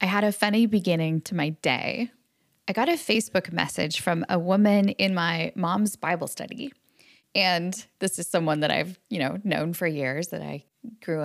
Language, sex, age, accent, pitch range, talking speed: English, female, 10-29, American, 170-230 Hz, 185 wpm